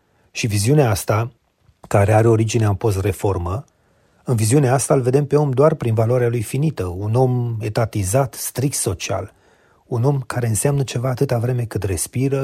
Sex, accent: male, native